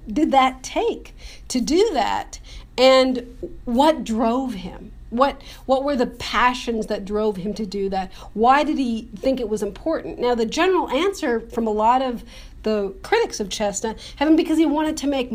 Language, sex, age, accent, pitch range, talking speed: English, female, 50-69, American, 210-260 Hz, 185 wpm